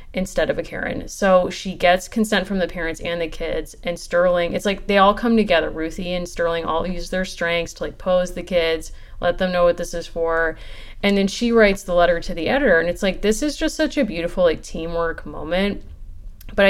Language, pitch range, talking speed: English, 160-195 Hz, 225 wpm